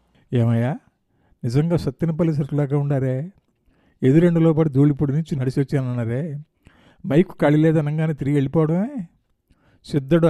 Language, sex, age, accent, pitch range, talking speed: Telugu, male, 50-69, native, 125-150 Hz, 100 wpm